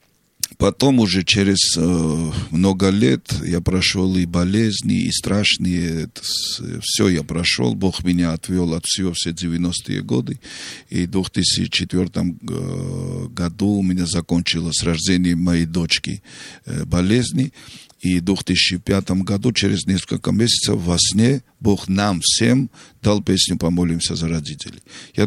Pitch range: 85-100 Hz